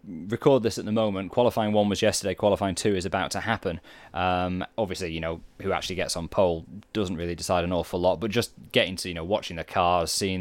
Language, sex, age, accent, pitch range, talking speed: English, male, 20-39, British, 90-115 Hz, 230 wpm